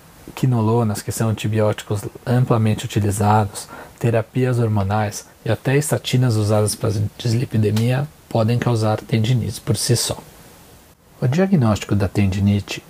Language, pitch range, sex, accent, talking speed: Portuguese, 105-120 Hz, male, Brazilian, 110 wpm